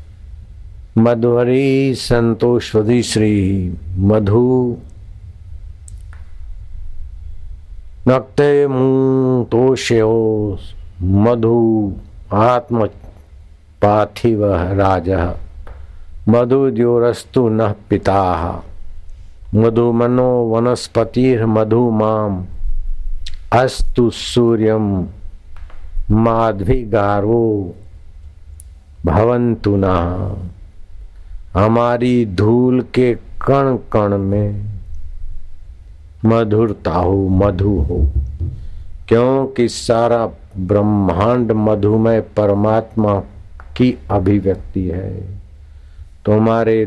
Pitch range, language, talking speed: 85-115 Hz, Hindi, 55 wpm